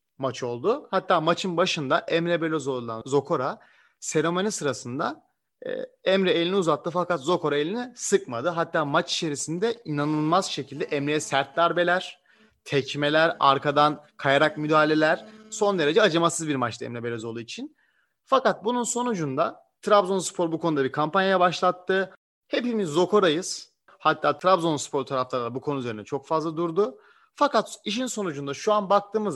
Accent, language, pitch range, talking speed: Turkish, German, 145-205 Hz, 135 wpm